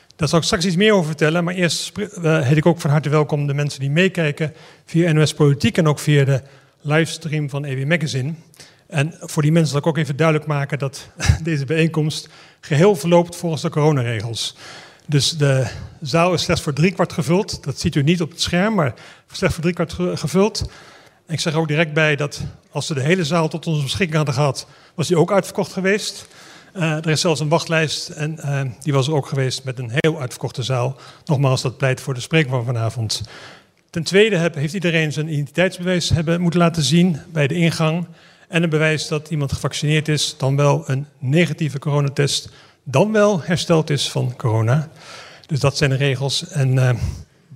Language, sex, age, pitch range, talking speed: Dutch, male, 40-59, 140-170 Hz, 195 wpm